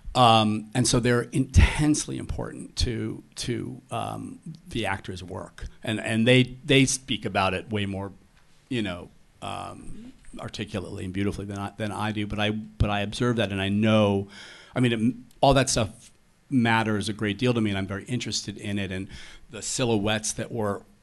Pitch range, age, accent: 100-120 Hz, 50-69, American